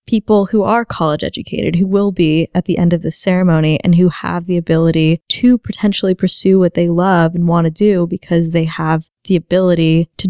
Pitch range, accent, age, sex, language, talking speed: 165-200 Hz, American, 20-39, female, English, 205 wpm